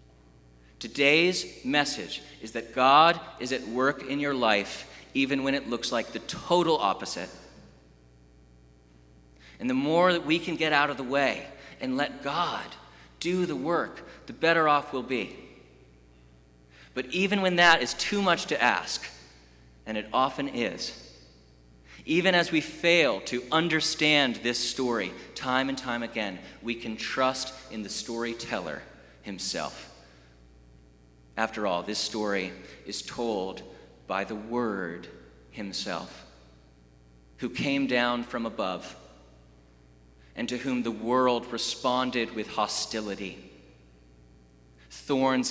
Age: 30-49